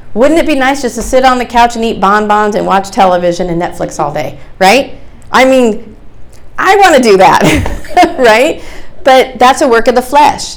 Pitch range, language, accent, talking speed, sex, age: 185-250 Hz, English, American, 205 wpm, female, 40-59